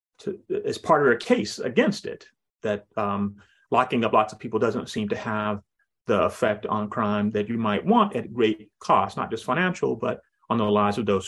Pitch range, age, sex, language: 105-145 Hz, 30-49, male, English